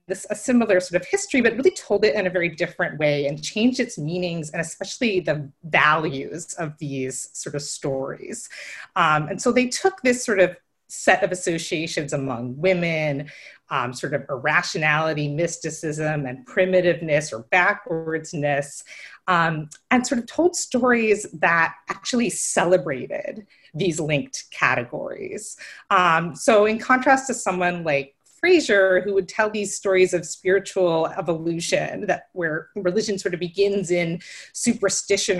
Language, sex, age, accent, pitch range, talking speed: English, female, 30-49, American, 155-200 Hz, 140 wpm